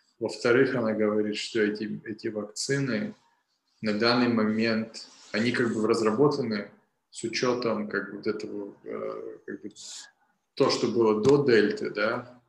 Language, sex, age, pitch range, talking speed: Russian, male, 20-39, 105-120 Hz, 130 wpm